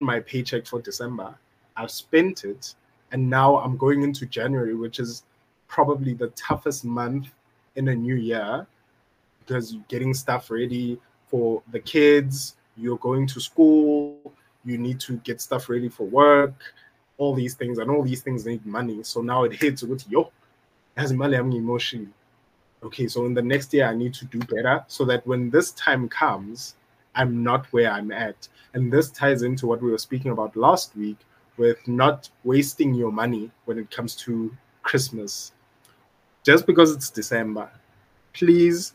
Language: English